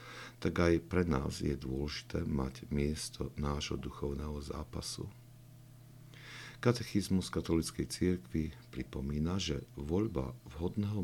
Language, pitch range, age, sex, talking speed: Slovak, 75-110 Hz, 50-69, male, 100 wpm